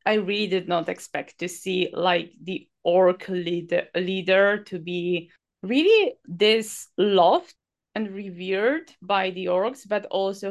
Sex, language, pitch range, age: female, English, 175-205 Hz, 20-39